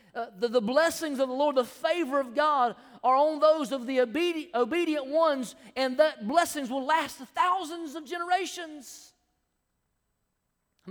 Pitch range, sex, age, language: 245-310 Hz, male, 40-59, English